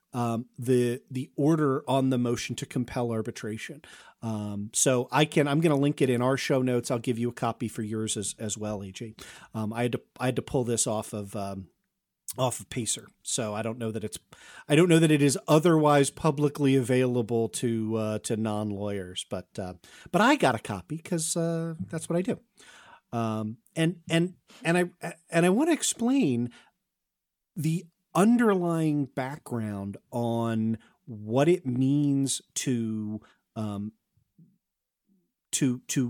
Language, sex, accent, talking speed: English, male, American, 170 wpm